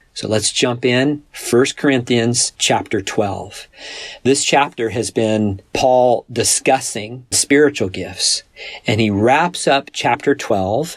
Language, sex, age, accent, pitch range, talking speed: English, male, 50-69, American, 105-125 Hz, 120 wpm